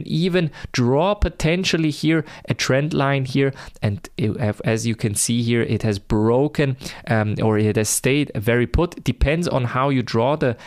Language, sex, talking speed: English, male, 170 wpm